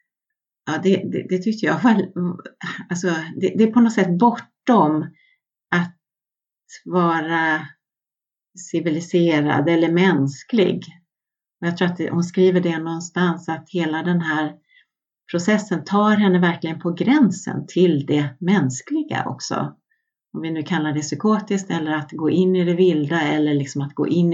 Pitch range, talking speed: 165-205 Hz, 140 wpm